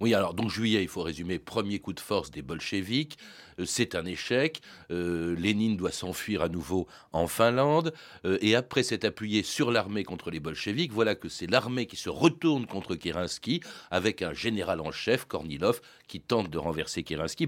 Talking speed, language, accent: 190 wpm, French, French